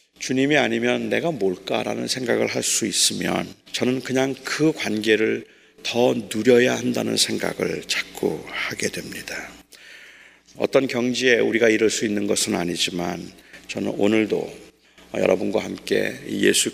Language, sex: Korean, male